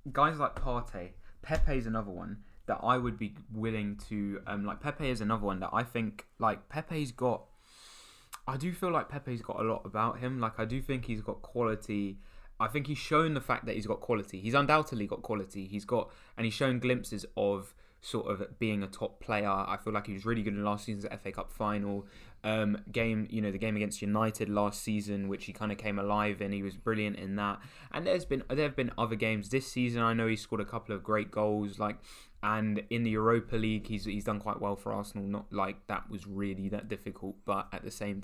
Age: 20-39